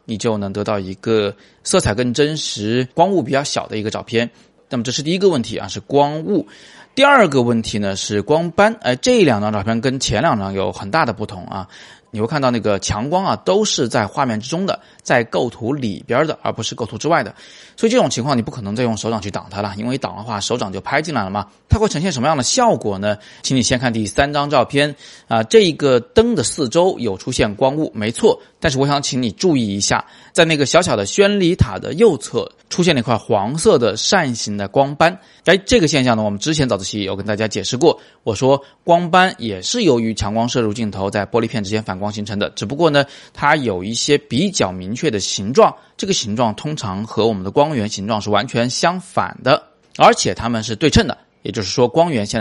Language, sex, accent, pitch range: Chinese, male, native, 105-150 Hz